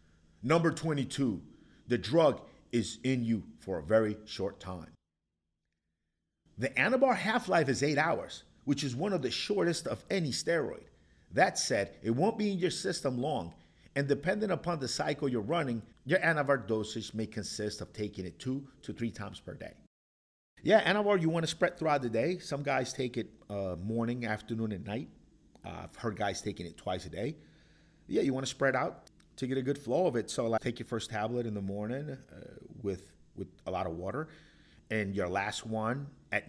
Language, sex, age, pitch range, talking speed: English, male, 50-69, 100-140 Hz, 190 wpm